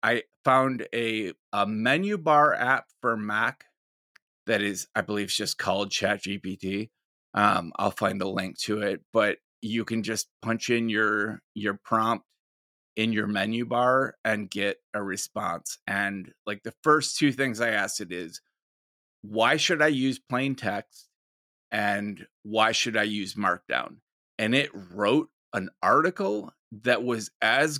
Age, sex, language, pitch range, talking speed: 30-49, male, English, 105-130 Hz, 155 wpm